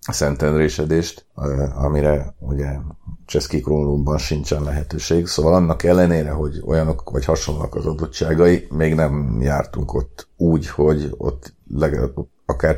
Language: Hungarian